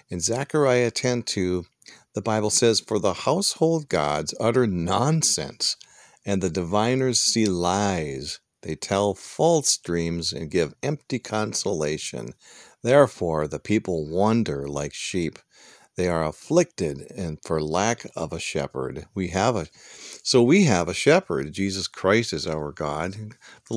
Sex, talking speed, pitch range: male, 140 wpm, 80-120 Hz